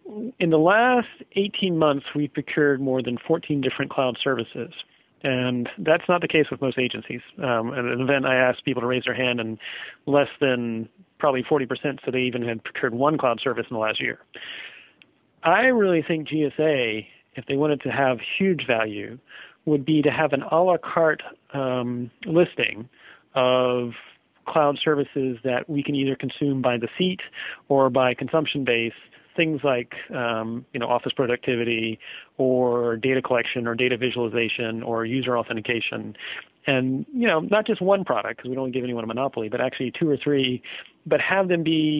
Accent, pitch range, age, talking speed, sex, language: American, 125-155 Hz, 40-59, 175 wpm, male, English